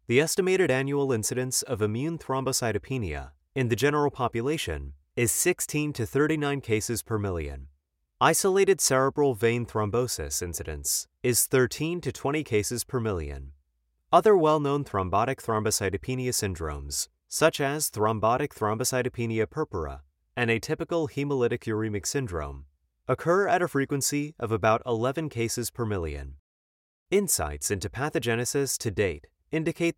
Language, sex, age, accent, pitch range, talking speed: English, male, 30-49, American, 95-140 Hz, 120 wpm